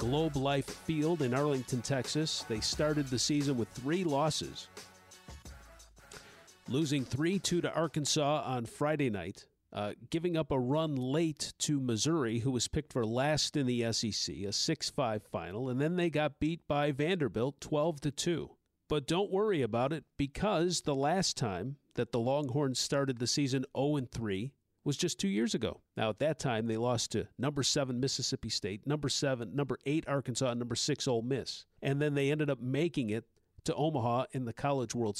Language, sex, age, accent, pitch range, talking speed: English, male, 50-69, American, 120-155 Hz, 175 wpm